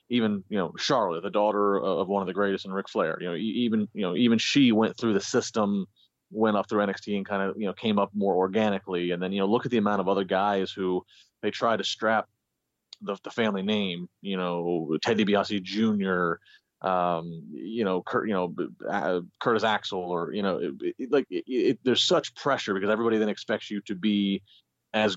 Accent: American